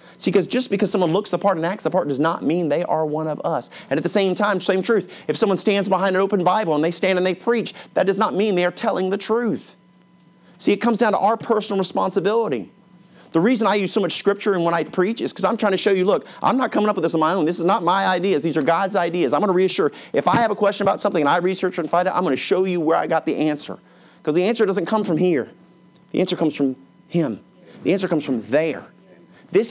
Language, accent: English, American